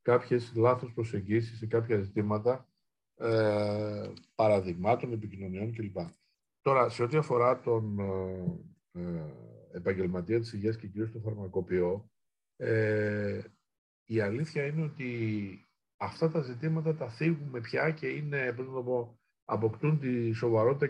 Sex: male